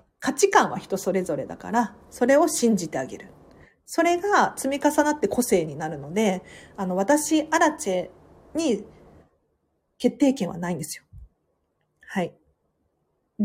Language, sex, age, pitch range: Japanese, female, 40-59, 190-260 Hz